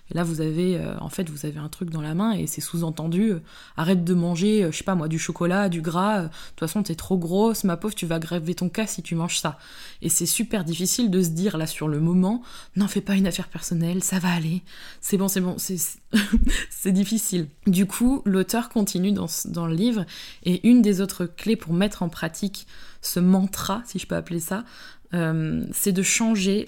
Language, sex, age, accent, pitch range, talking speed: French, female, 20-39, French, 170-215 Hz, 230 wpm